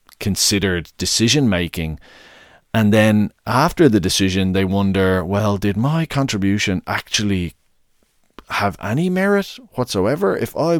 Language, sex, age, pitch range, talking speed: English, male, 30-49, 95-125 Hz, 115 wpm